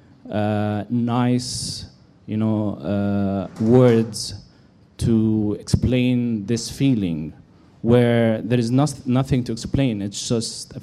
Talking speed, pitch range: 110 wpm, 110-130 Hz